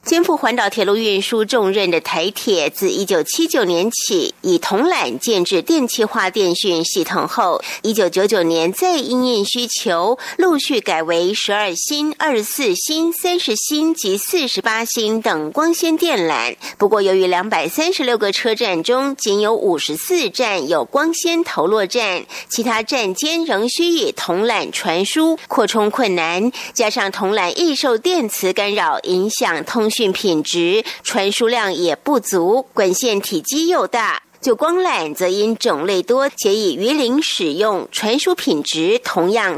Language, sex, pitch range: German, female, 200-325 Hz